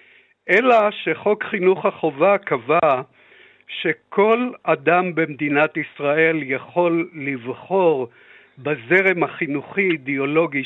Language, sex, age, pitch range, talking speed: Hebrew, male, 60-79, 145-200 Hz, 80 wpm